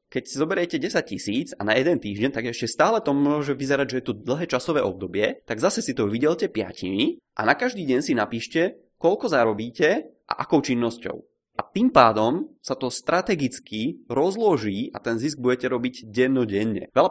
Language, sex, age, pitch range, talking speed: Czech, male, 20-39, 110-140 Hz, 180 wpm